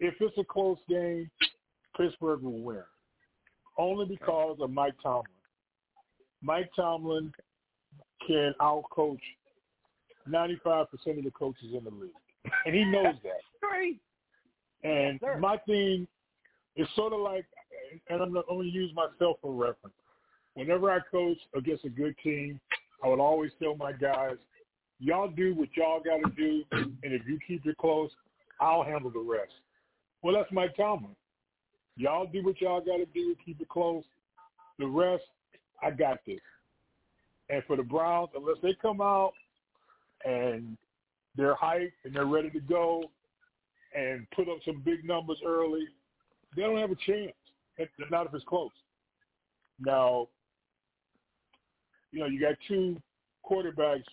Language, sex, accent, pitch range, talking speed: English, male, American, 145-185 Hz, 145 wpm